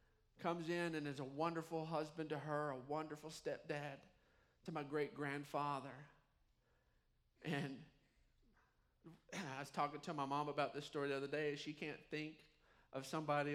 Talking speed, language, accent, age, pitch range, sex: 150 wpm, English, American, 40-59, 155-245 Hz, male